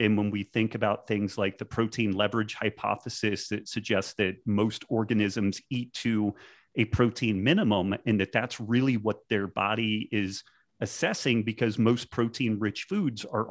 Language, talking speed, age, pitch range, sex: English, 160 wpm, 30-49, 105-120 Hz, male